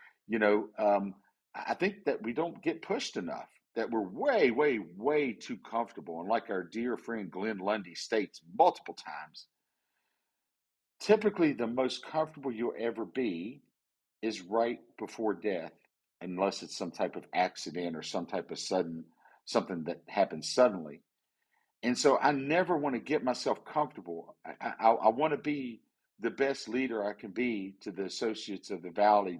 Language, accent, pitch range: English, American, 105-145 Hz